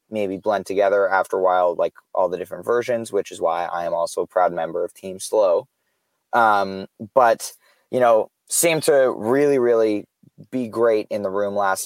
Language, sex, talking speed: English, male, 185 wpm